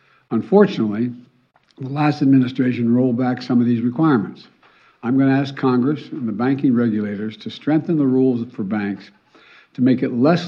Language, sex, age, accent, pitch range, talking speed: English, male, 60-79, American, 120-140 Hz, 165 wpm